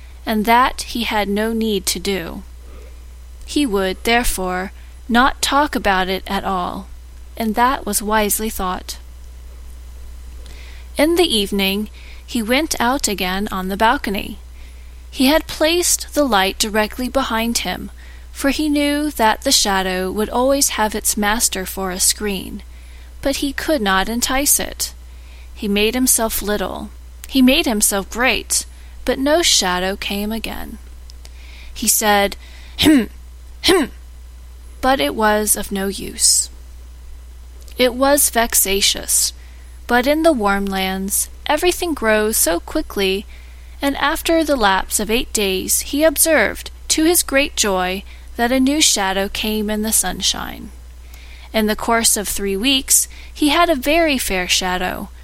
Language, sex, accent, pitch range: English, female, American, 180-255 Hz